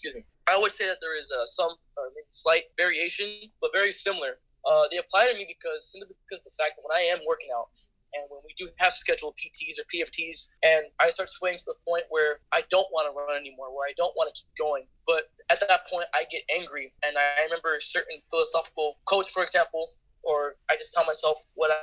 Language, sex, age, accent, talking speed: English, male, 20-39, American, 230 wpm